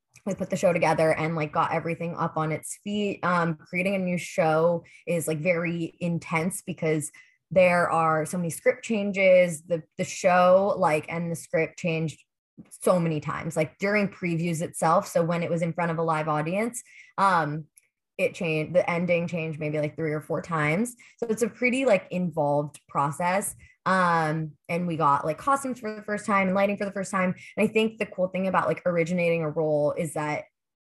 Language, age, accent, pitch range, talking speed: English, 20-39, American, 160-195 Hz, 200 wpm